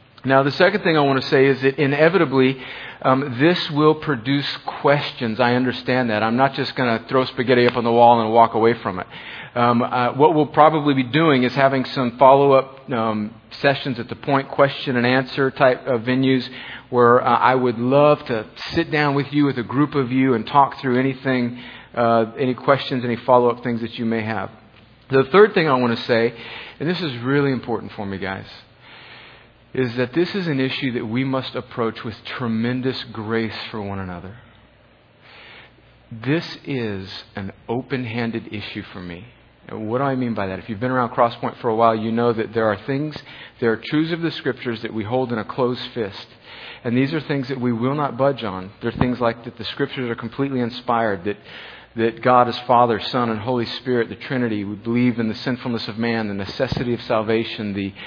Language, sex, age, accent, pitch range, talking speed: English, male, 40-59, American, 115-135 Hz, 205 wpm